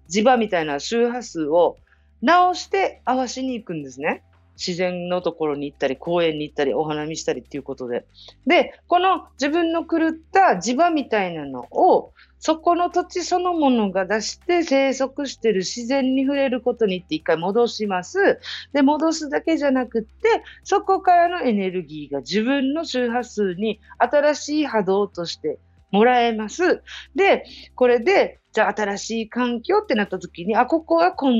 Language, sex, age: Japanese, female, 40-59